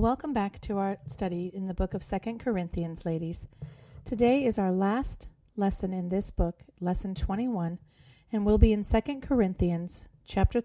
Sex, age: female, 40-59